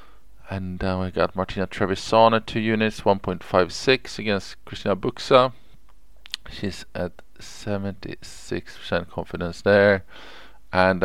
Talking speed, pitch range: 105 wpm, 95-110 Hz